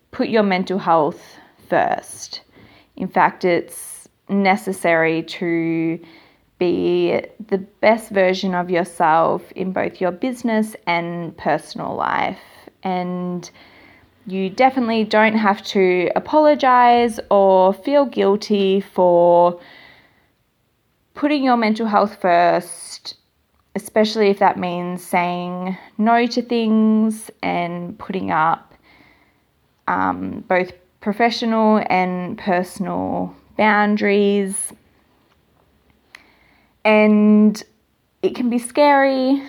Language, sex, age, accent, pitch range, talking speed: English, female, 20-39, Australian, 180-215 Hz, 95 wpm